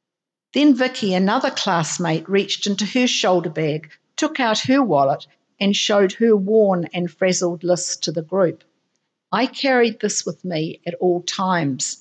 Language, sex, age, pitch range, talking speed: English, female, 50-69, 170-220 Hz, 155 wpm